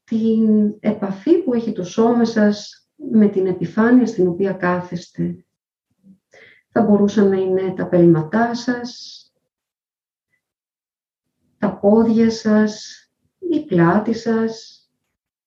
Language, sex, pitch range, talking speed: Greek, female, 185-245 Hz, 100 wpm